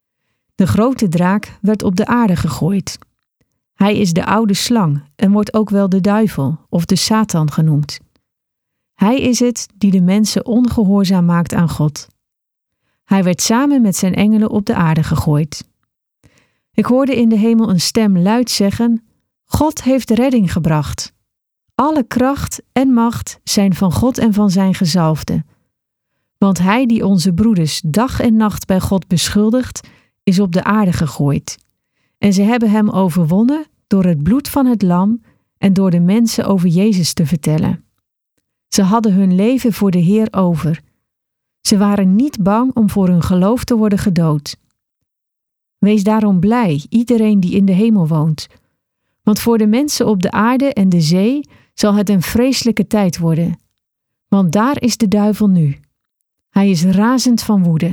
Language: Dutch